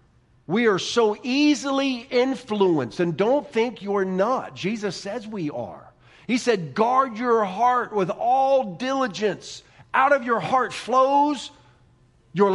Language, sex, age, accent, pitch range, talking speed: English, male, 50-69, American, 135-205 Hz, 135 wpm